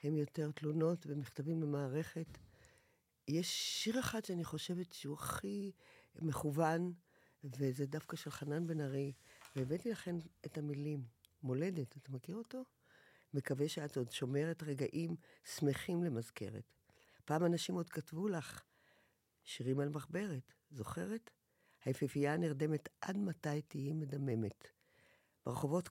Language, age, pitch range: Hebrew, 50-69, 130-170 Hz